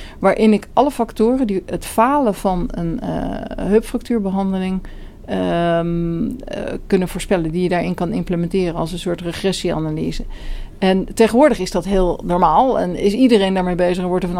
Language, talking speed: Dutch, 155 wpm